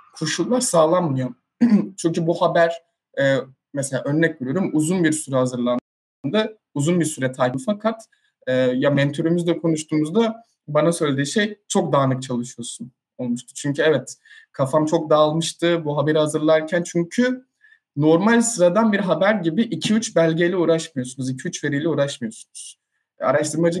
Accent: native